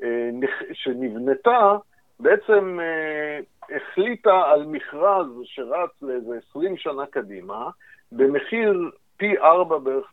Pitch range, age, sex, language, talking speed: 135-205 Hz, 50-69, male, Hebrew, 95 wpm